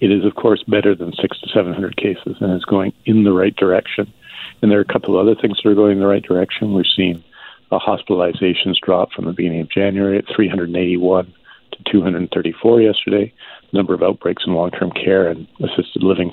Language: English